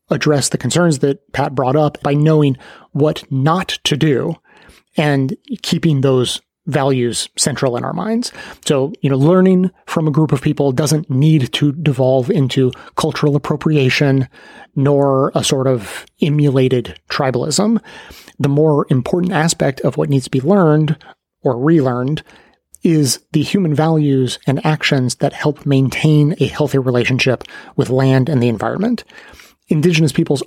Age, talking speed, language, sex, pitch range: 30-49, 145 wpm, English, male, 135-155 Hz